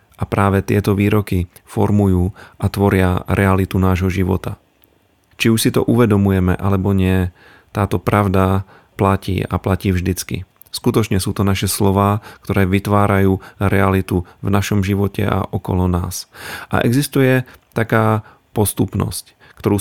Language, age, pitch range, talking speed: Slovak, 40-59, 95-105 Hz, 125 wpm